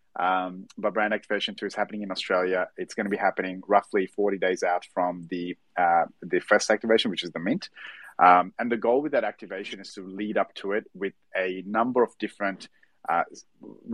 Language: English